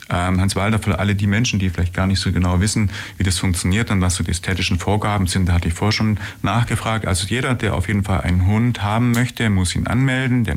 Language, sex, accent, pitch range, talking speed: German, male, German, 85-105 Hz, 245 wpm